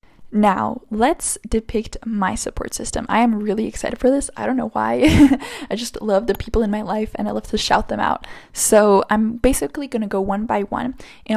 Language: English